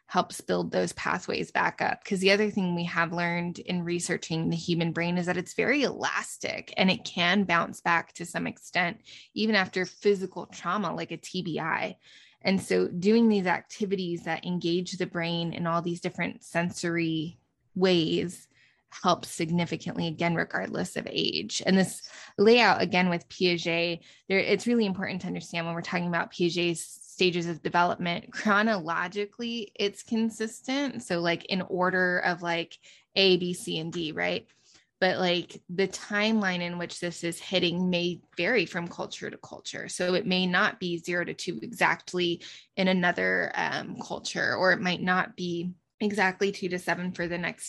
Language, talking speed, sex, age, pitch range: English, 165 wpm, female, 20-39, 170-195 Hz